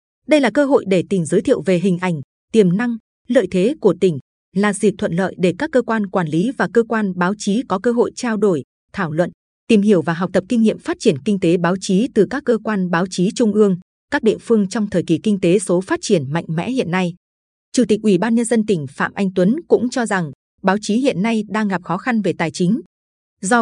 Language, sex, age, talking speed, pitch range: Vietnamese, female, 20-39, 255 wpm, 180-230 Hz